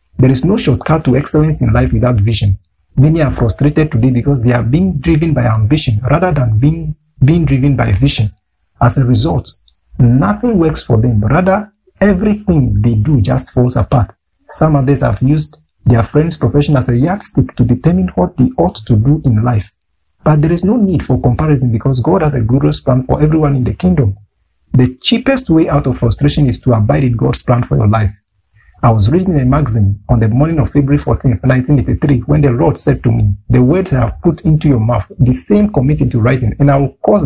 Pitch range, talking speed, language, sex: 120-155 Hz, 210 wpm, English, male